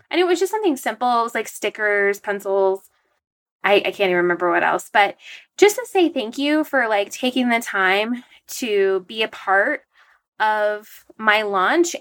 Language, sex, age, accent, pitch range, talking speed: English, female, 20-39, American, 195-270 Hz, 180 wpm